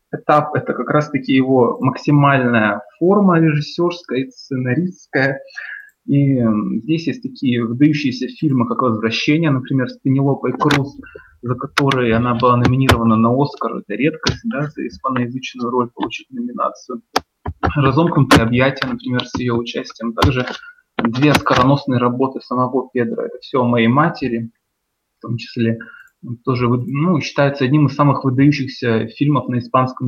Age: 20-39